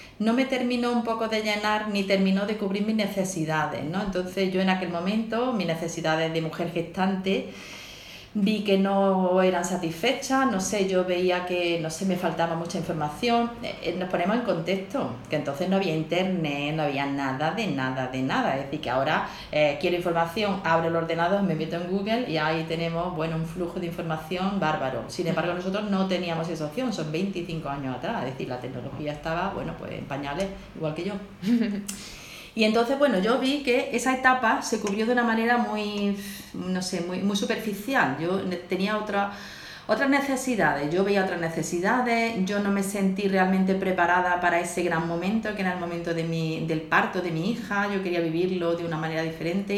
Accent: Spanish